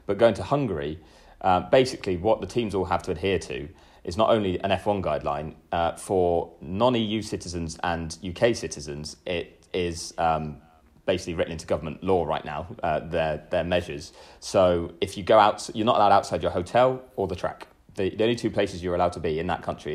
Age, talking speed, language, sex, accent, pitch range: 30-49, 200 wpm, English, male, British, 80-100 Hz